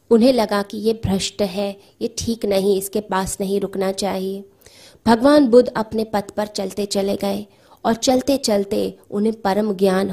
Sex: female